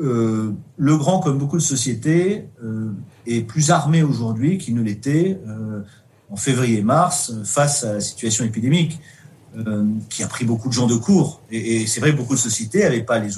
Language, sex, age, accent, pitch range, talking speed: French, male, 40-59, French, 115-150 Hz, 195 wpm